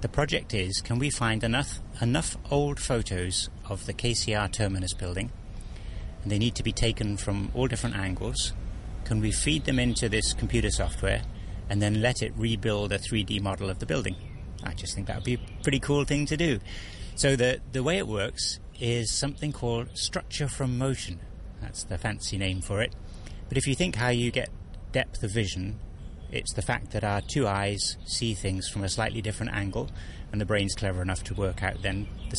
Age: 30-49